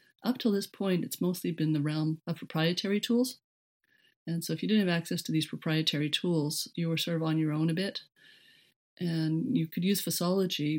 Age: 40-59